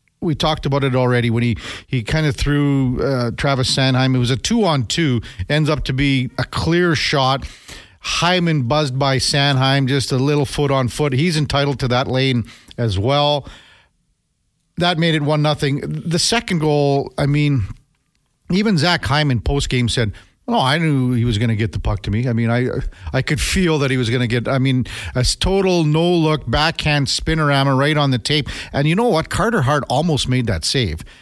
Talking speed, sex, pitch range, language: 205 wpm, male, 125-155 Hz, English